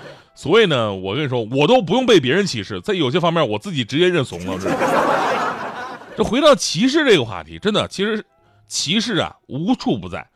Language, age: Chinese, 30-49